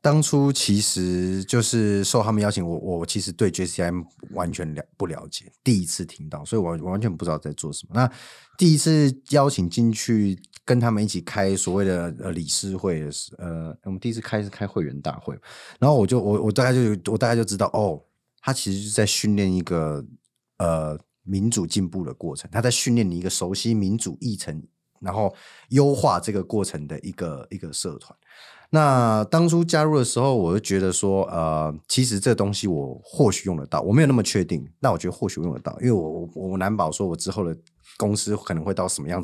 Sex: male